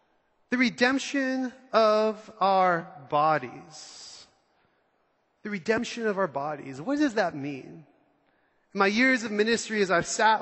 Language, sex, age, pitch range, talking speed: English, male, 30-49, 180-220 Hz, 125 wpm